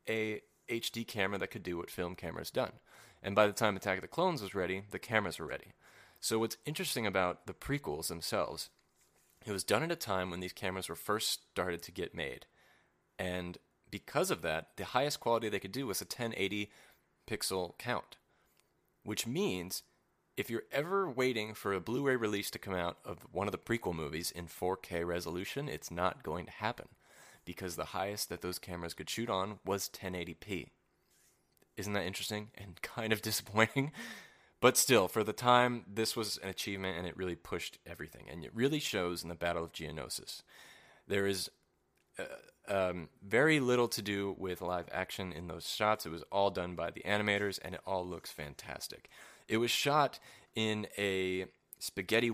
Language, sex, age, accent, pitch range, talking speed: English, male, 30-49, American, 90-110 Hz, 185 wpm